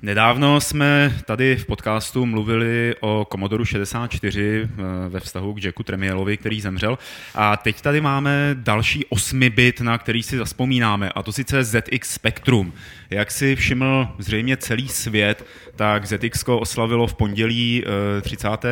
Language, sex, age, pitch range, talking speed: Czech, male, 30-49, 105-120 Hz, 140 wpm